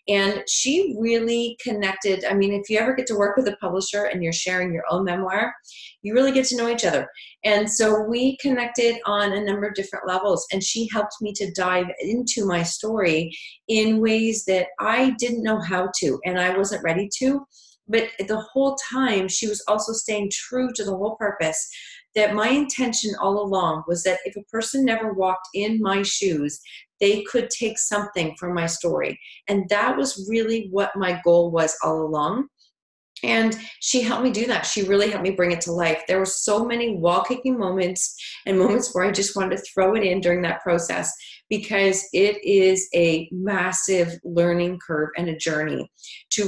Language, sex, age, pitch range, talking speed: English, female, 30-49, 175-225 Hz, 190 wpm